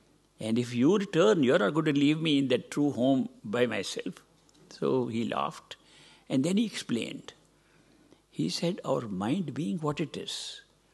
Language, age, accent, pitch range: English, 60-79, Indian, 135-205 Hz